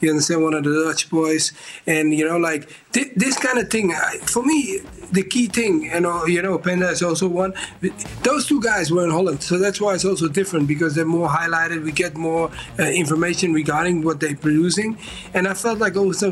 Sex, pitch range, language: male, 165-200 Hz, English